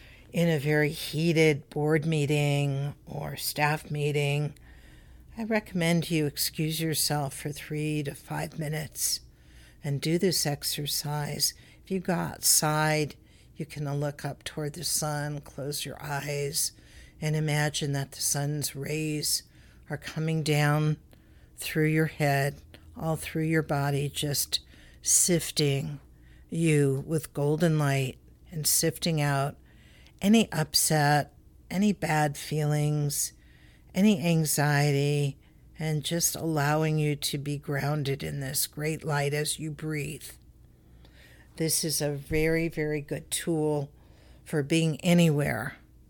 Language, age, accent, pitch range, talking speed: English, 60-79, American, 140-160 Hz, 120 wpm